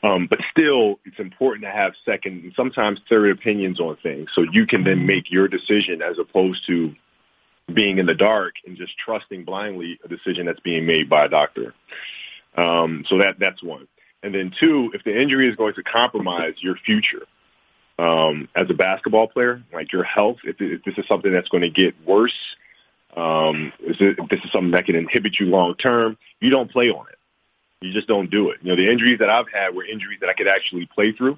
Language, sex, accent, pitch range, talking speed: English, male, American, 85-110 Hz, 215 wpm